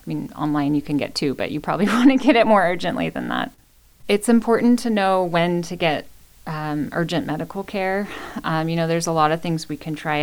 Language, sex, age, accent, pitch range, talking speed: English, female, 30-49, American, 145-165 Hz, 235 wpm